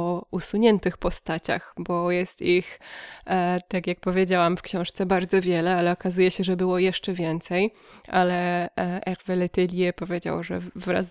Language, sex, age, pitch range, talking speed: Polish, female, 20-39, 180-200 Hz, 135 wpm